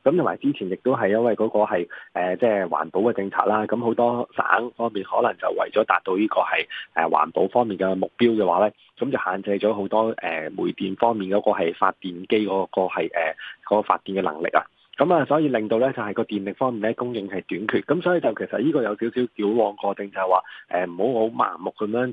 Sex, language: male, Chinese